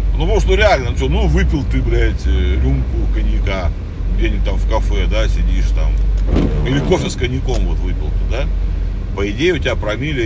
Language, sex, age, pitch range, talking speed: Russian, male, 40-59, 75-90 Hz, 185 wpm